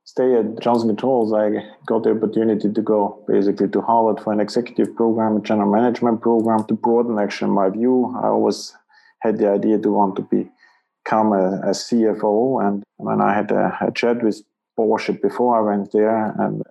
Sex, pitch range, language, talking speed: male, 100-115 Hz, English, 195 wpm